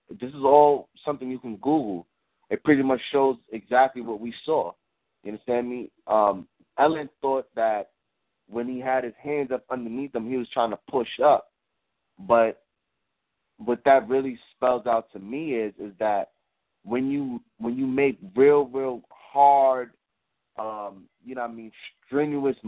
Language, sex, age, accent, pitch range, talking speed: English, male, 20-39, American, 110-135 Hz, 165 wpm